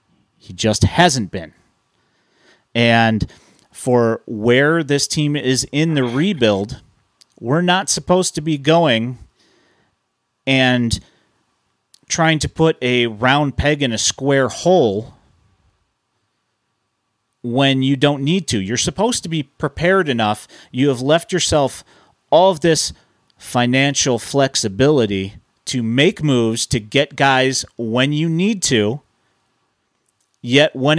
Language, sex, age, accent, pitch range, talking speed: English, male, 40-59, American, 115-155 Hz, 120 wpm